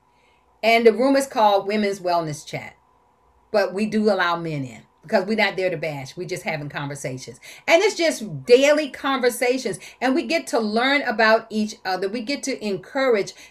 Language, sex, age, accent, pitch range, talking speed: English, female, 40-59, American, 200-275 Hz, 180 wpm